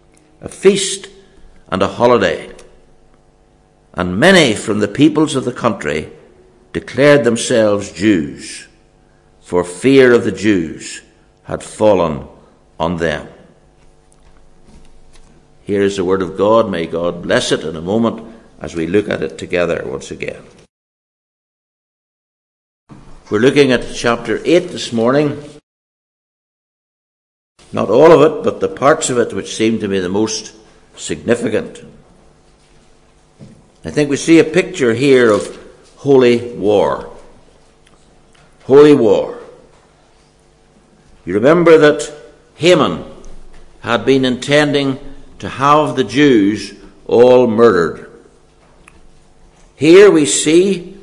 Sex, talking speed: male, 115 wpm